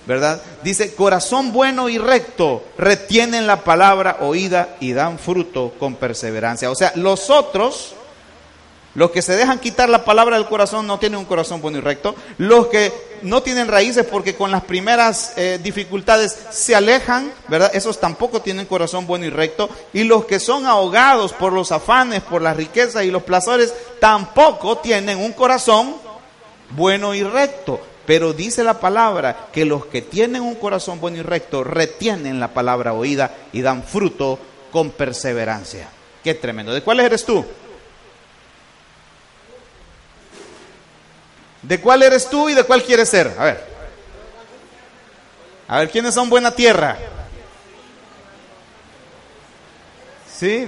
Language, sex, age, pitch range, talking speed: Spanish, male, 40-59, 165-235 Hz, 145 wpm